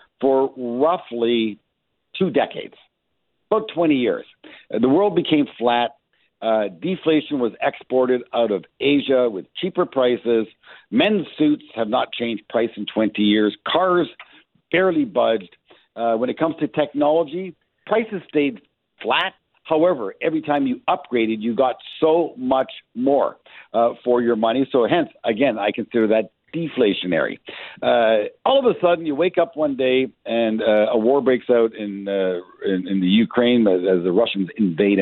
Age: 60-79